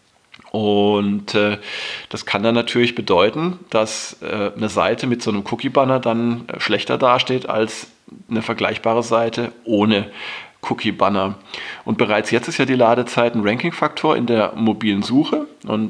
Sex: male